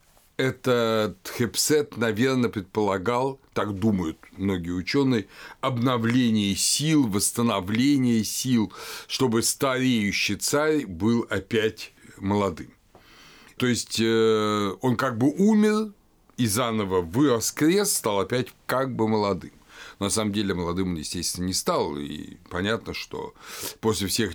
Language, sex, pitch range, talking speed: Russian, male, 100-130 Hz, 120 wpm